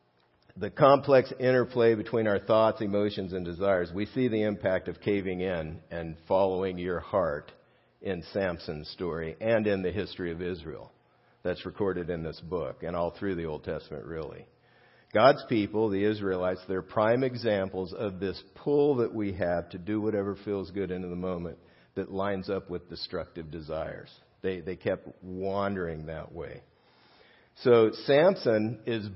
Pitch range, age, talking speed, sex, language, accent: 95-115 Hz, 50-69, 160 wpm, male, English, American